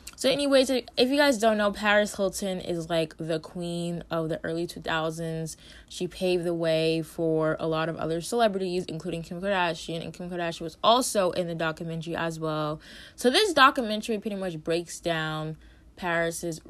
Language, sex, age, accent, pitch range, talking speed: English, female, 20-39, American, 165-190 Hz, 175 wpm